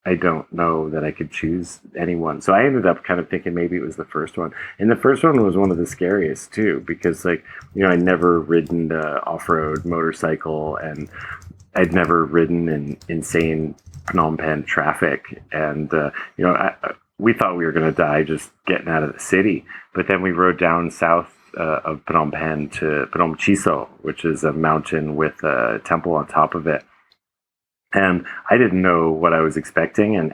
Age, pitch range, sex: 30-49, 80-90 Hz, male